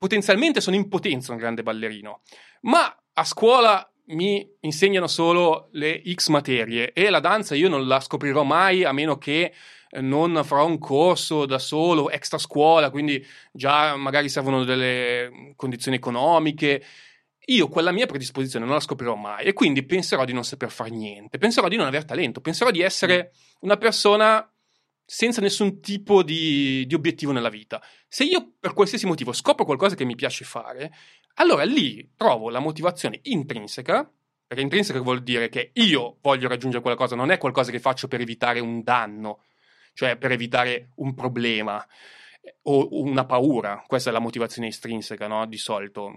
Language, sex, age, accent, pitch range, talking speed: Italian, male, 30-49, native, 125-165 Hz, 165 wpm